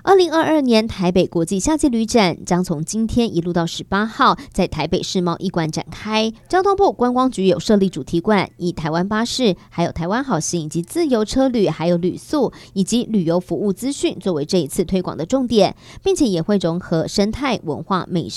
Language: Chinese